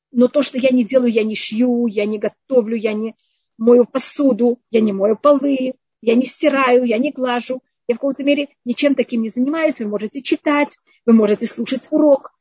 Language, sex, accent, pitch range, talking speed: Russian, female, native, 230-290 Hz, 200 wpm